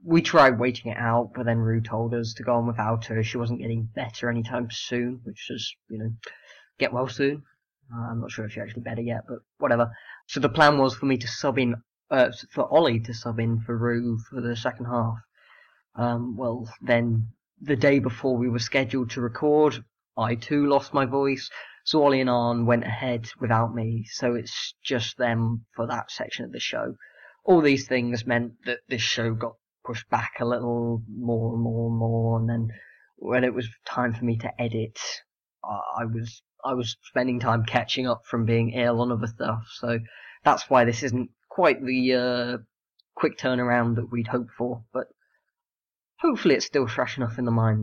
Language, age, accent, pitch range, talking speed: English, 10-29, British, 115-125 Hz, 200 wpm